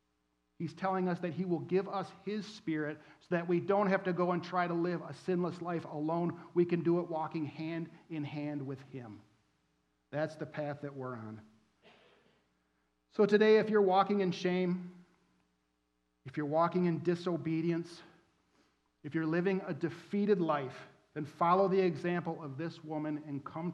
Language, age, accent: English, 40-59, American